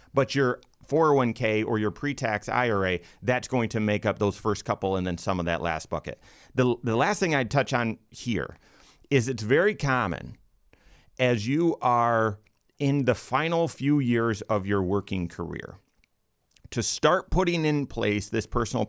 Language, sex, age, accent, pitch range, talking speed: English, male, 40-59, American, 105-130 Hz, 170 wpm